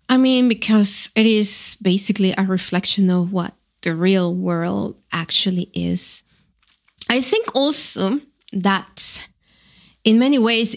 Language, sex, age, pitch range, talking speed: German, female, 20-39, 180-215 Hz, 125 wpm